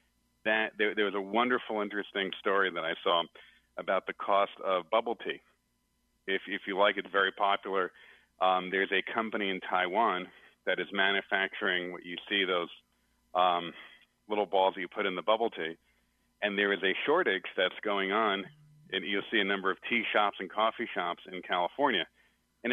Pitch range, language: 90-115 Hz, English